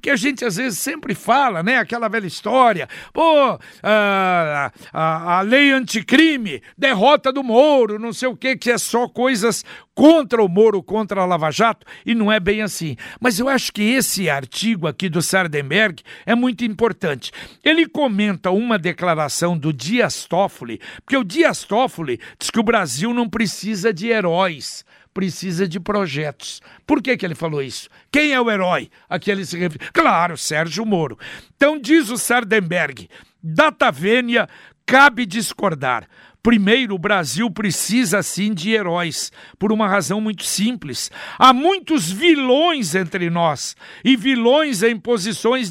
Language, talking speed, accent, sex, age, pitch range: Portuguese, 160 wpm, Brazilian, male, 60-79, 195-260 Hz